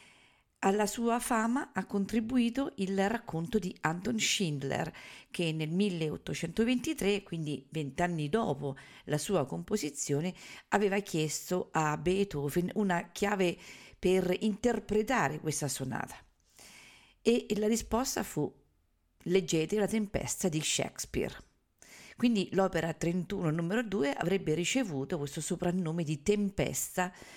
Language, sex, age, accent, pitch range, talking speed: Italian, female, 50-69, native, 155-210 Hz, 105 wpm